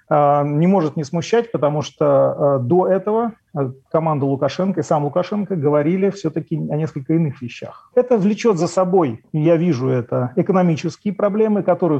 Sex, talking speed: male, 145 wpm